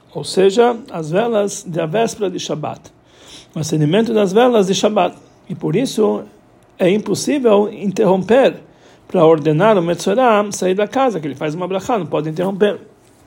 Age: 60-79